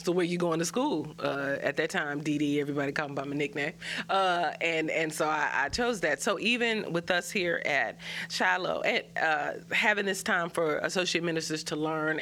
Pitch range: 155-195 Hz